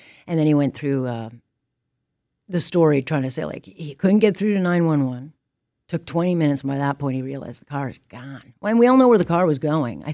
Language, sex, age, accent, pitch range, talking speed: English, female, 40-59, American, 140-185 Hz, 260 wpm